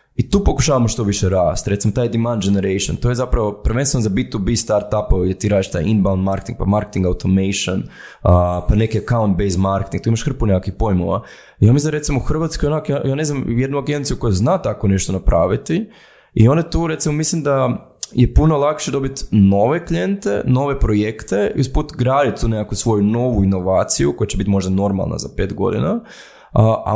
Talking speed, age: 180 wpm, 20-39